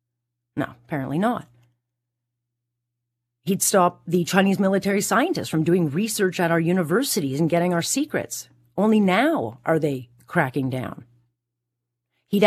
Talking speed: 125 wpm